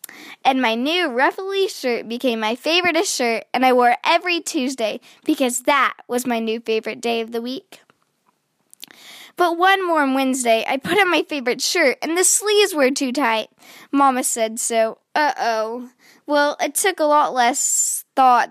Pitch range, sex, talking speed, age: 235-305 Hz, female, 170 wpm, 10-29